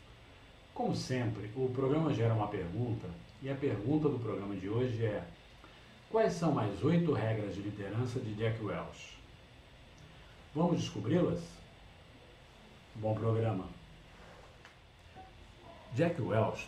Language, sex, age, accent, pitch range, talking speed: Portuguese, male, 50-69, Brazilian, 105-135 Hz, 110 wpm